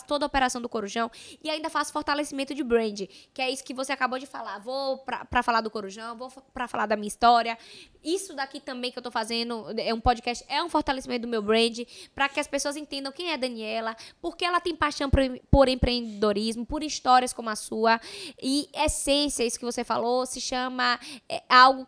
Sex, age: female, 10-29